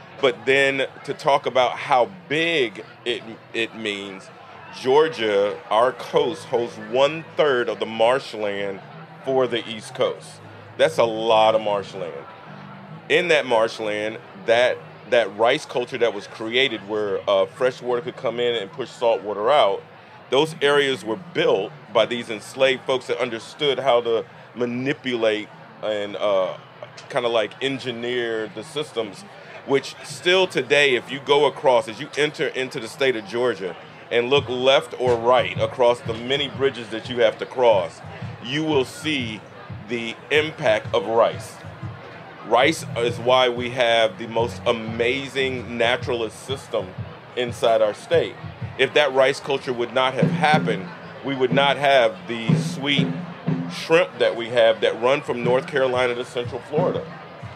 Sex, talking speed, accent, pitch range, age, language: male, 150 wpm, American, 115-140 Hz, 30-49, English